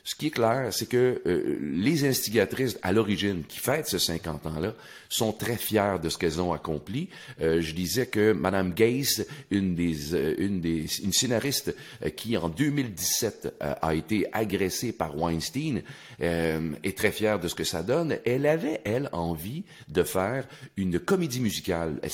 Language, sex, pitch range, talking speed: French, male, 90-125 Hz, 170 wpm